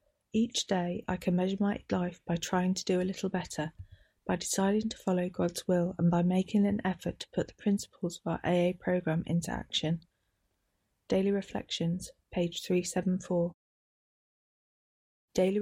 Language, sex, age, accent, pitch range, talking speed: English, female, 30-49, British, 170-205 Hz, 155 wpm